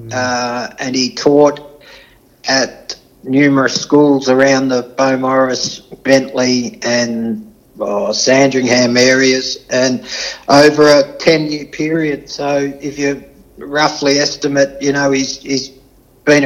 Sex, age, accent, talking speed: male, 60-79, Australian, 110 wpm